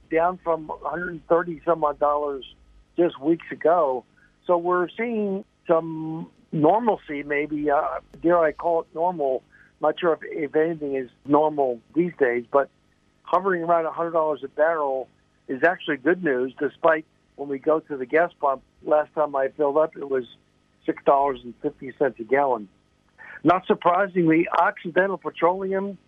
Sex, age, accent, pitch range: male, 60-79, American, 140-170 Hz